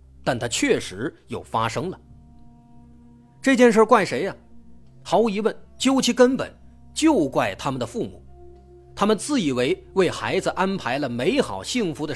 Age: 30-49